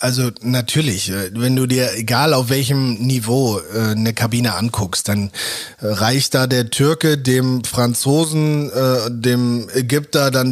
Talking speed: 125 wpm